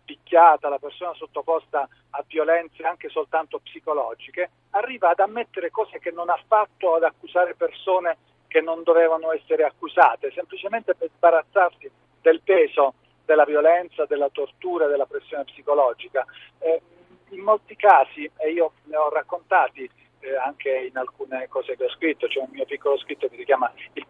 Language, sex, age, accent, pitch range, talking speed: Italian, male, 40-59, native, 150-220 Hz, 155 wpm